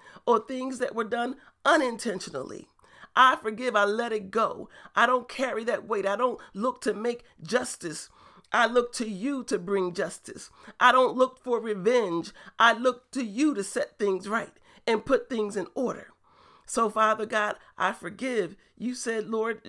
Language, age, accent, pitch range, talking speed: English, 40-59, American, 205-250 Hz, 170 wpm